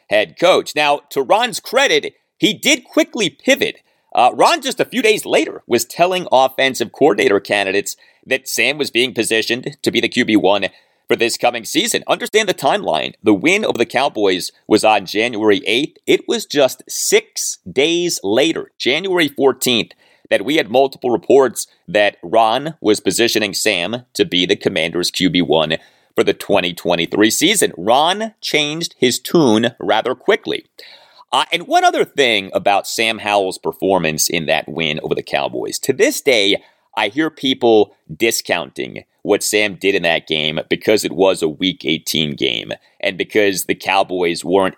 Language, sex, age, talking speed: English, male, 40-59, 160 wpm